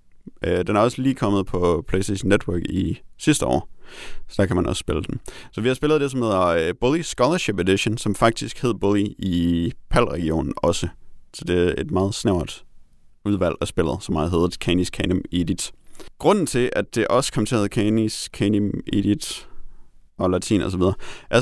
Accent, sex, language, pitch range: native, male, Danish, 90-115 Hz